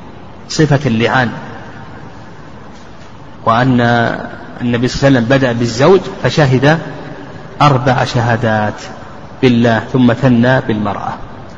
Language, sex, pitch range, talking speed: Arabic, male, 120-165 Hz, 90 wpm